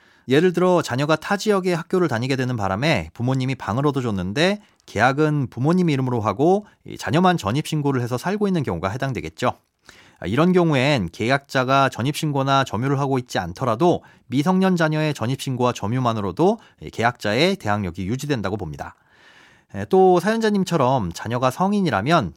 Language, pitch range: Korean, 115-165 Hz